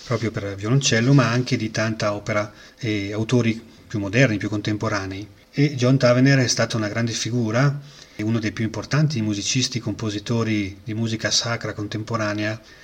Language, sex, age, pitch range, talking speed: Italian, male, 30-49, 105-120 Hz, 155 wpm